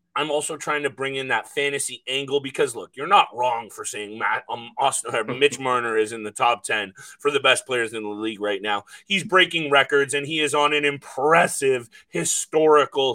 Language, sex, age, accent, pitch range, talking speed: English, male, 30-49, American, 135-170 Hz, 195 wpm